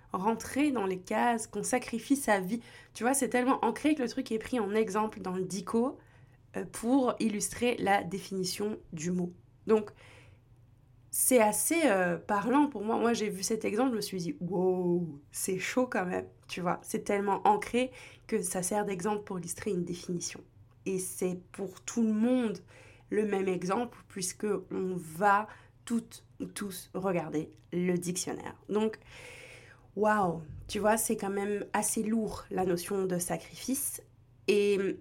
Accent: French